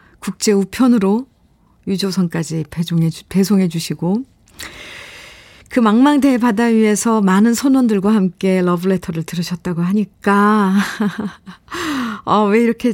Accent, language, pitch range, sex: native, Korean, 185-230 Hz, female